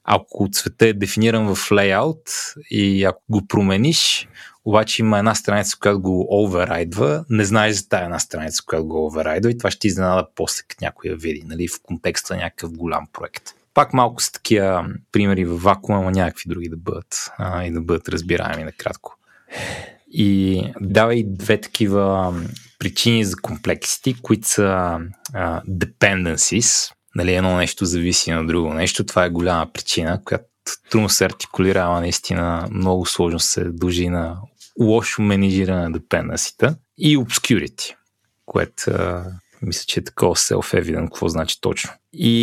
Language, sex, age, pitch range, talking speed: Bulgarian, male, 20-39, 90-110 Hz, 150 wpm